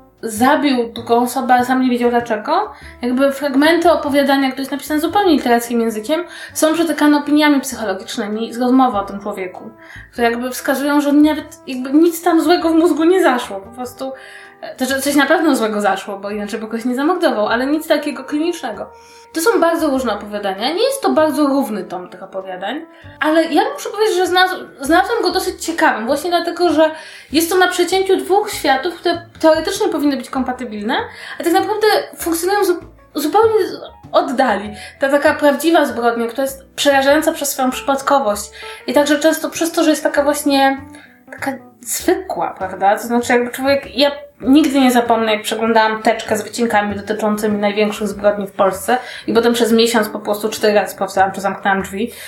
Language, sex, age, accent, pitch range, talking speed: Polish, female, 20-39, native, 230-320 Hz, 180 wpm